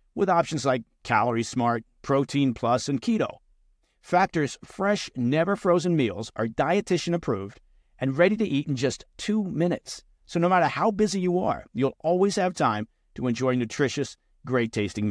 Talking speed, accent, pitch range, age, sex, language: 165 wpm, American, 120-180 Hz, 50-69, male, English